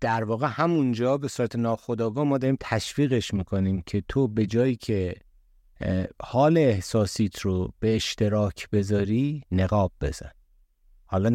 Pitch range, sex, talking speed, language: 95-120 Hz, male, 125 wpm, Persian